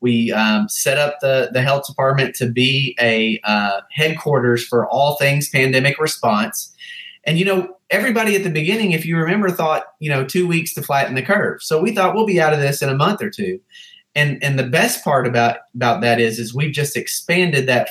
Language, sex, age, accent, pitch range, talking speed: English, male, 30-49, American, 125-175 Hz, 215 wpm